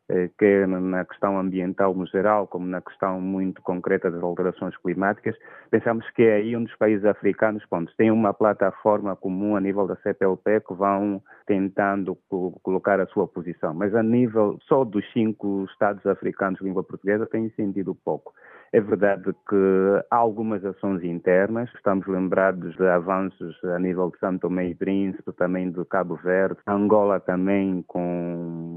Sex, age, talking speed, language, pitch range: male, 30-49, 165 wpm, Portuguese, 90-100 Hz